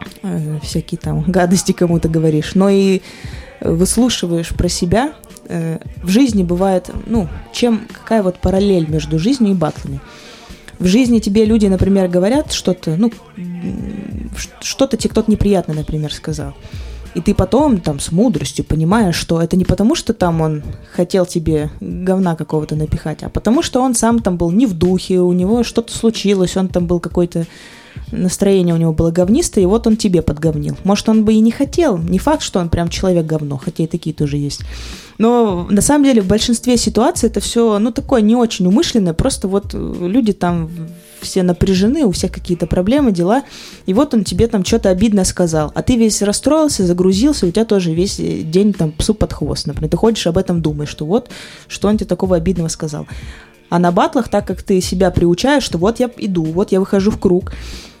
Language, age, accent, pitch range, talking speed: Russian, 20-39, native, 170-220 Hz, 185 wpm